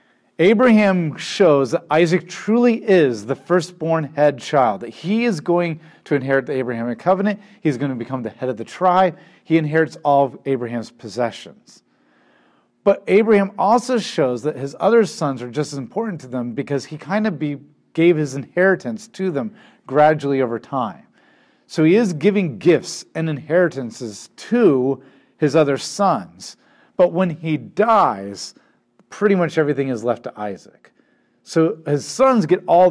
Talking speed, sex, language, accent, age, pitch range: 160 wpm, male, English, American, 40-59, 125-180 Hz